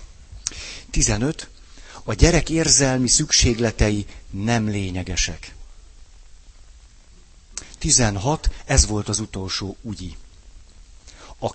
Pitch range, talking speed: 85-115 Hz, 75 wpm